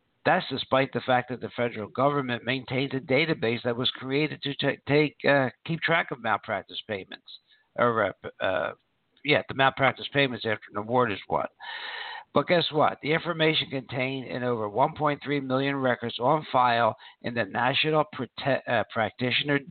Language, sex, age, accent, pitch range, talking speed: English, male, 60-79, American, 125-155 Hz, 165 wpm